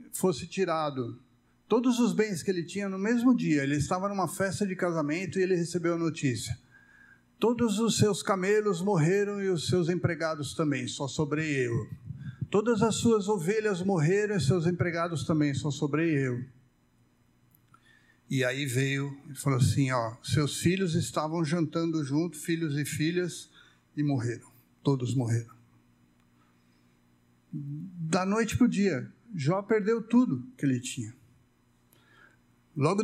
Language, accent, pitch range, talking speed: Portuguese, Brazilian, 125-180 Hz, 140 wpm